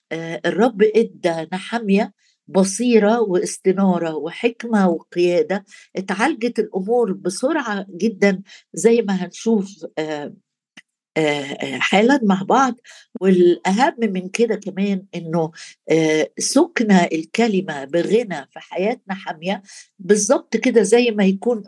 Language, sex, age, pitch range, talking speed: Arabic, female, 50-69, 180-230 Hz, 90 wpm